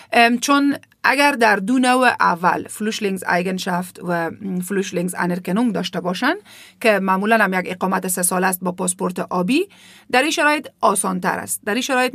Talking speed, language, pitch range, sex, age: 160 wpm, Persian, 180-255 Hz, female, 40-59